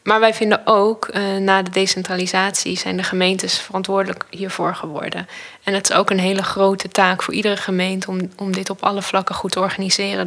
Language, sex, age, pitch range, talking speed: Dutch, female, 10-29, 185-205 Hz, 195 wpm